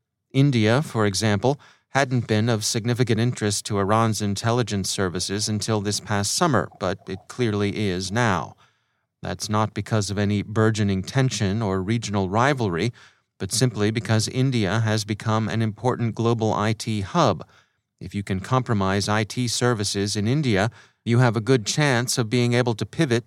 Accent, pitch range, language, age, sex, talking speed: American, 105-125 Hz, English, 30-49, male, 155 wpm